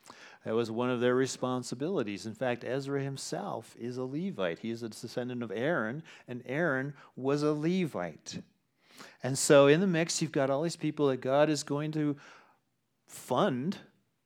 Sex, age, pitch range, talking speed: male, 40-59, 135-170 Hz, 170 wpm